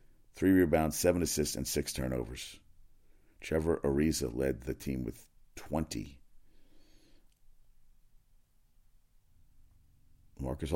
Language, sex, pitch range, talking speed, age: English, male, 75-95 Hz, 85 wpm, 50-69